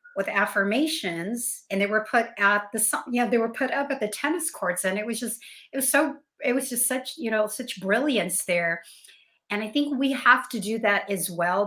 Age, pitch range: 50-69, 180-225 Hz